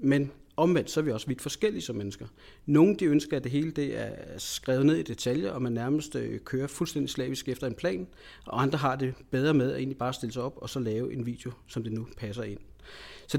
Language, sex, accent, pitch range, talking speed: Danish, male, native, 125-155 Hz, 245 wpm